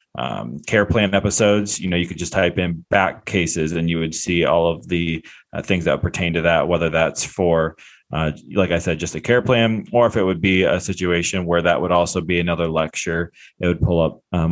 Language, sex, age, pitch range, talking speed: English, male, 20-39, 90-100 Hz, 230 wpm